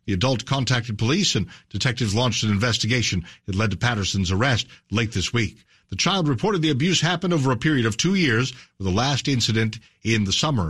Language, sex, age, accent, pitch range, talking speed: English, male, 60-79, American, 105-145 Hz, 200 wpm